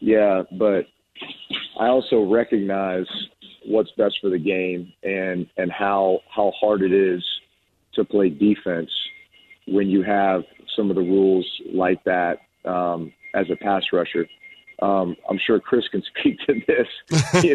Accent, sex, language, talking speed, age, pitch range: American, male, English, 145 wpm, 40-59, 95-115 Hz